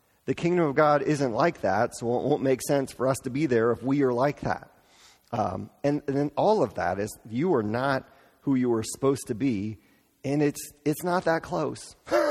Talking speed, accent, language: 220 wpm, American, English